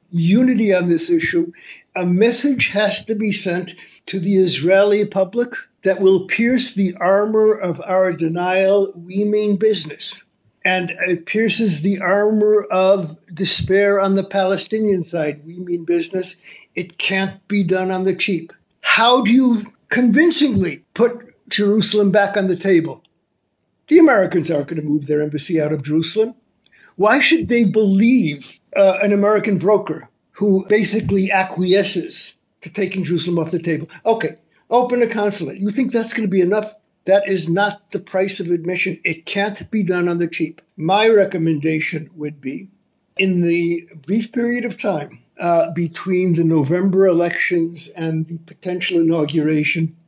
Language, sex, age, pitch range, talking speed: English, male, 60-79, 170-205 Hz, 155 wpm